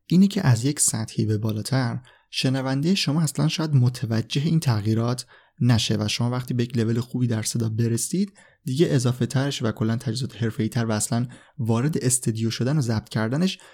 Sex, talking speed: male, 180 wpm